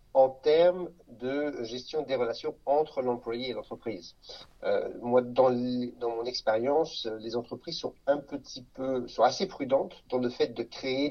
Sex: male